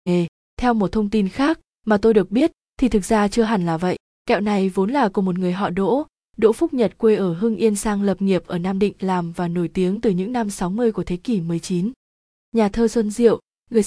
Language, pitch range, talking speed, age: Vietnamese, 185-225 Hz, 240 wpm, 20-39